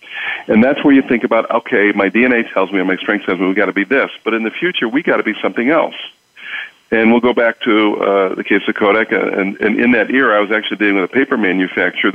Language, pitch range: English, 100-120 Hz